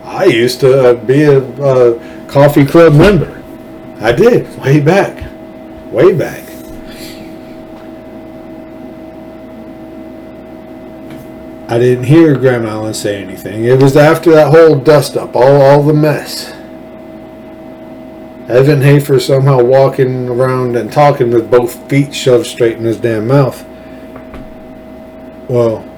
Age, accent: 50-69, American